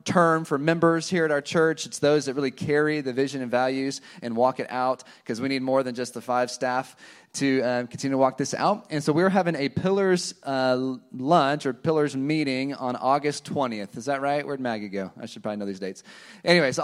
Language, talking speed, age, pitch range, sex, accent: English, 225 wpm, 30-49, 130-165 Hz, male, American